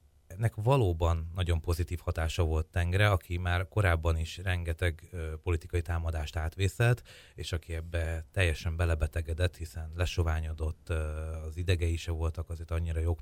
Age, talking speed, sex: 30-49, 130 wpm, male